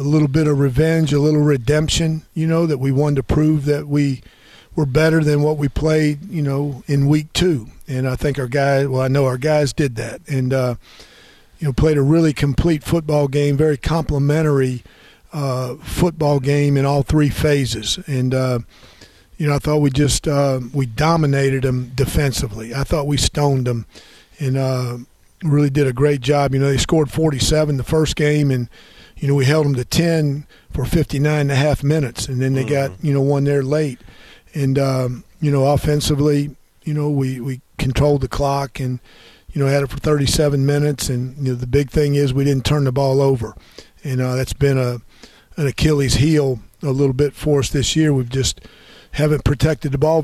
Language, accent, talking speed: English, American, 200 wpm